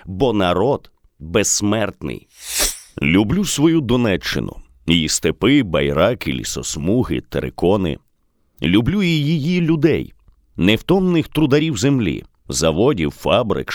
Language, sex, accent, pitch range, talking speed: Ukrainian, male, native, 105-150 Hz, 85 wpm